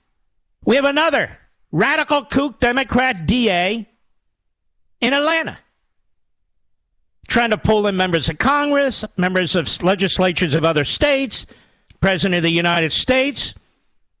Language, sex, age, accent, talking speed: English, male, 50-69, American, 115 wpm